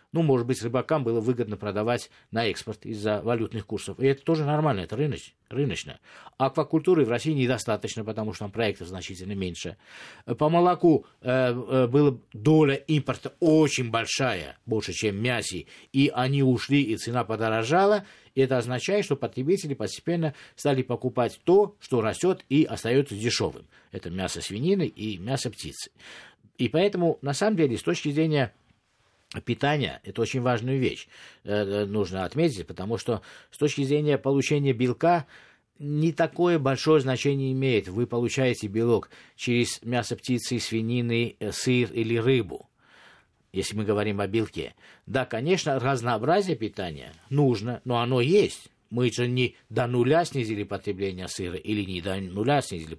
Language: Russian